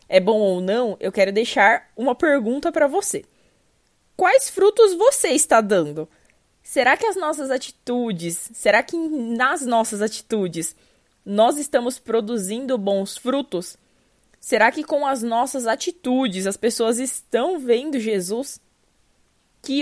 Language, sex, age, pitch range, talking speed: Portuguese, female, 20-39, 210-290 Hz, 130 wpm